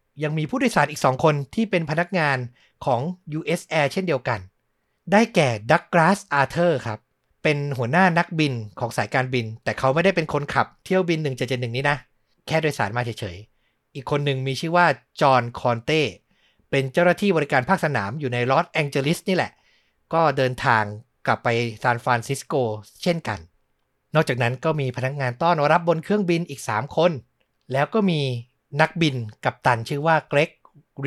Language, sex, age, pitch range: Thai, male, 60-79, 120-160 Hz